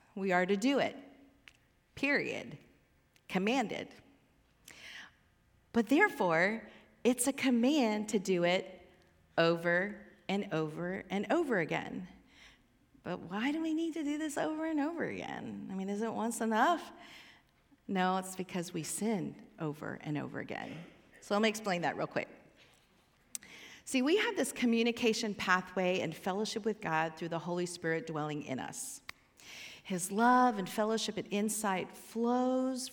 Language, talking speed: English, 145 wpm